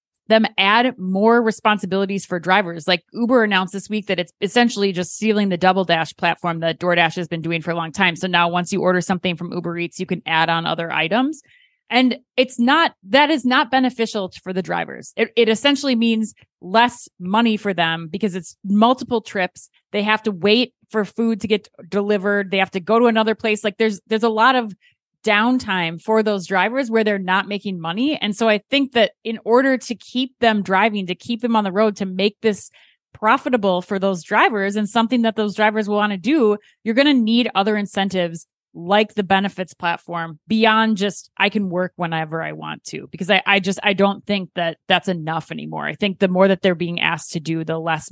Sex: female